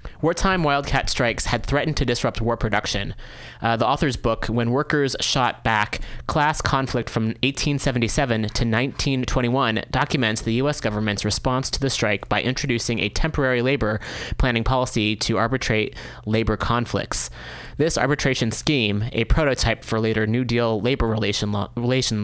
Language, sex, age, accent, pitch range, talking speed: English, male, 30-49, American, 110-140 Hz, 145 wpm